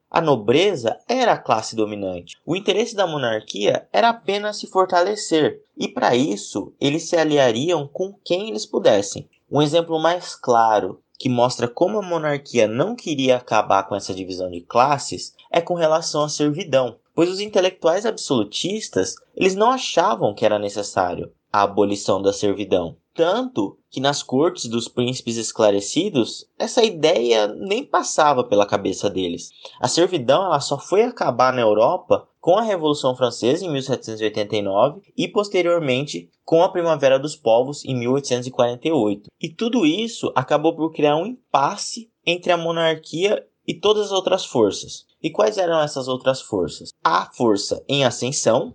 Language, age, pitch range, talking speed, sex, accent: Portuguese, 20-39, 115-175 Hz, 150 wpm, male, Brazilian